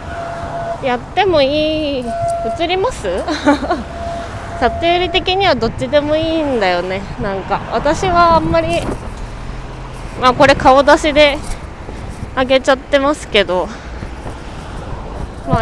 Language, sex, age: Japanese, female, 20-39